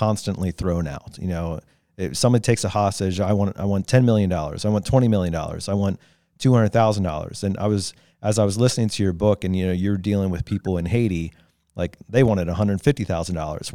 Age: 40-59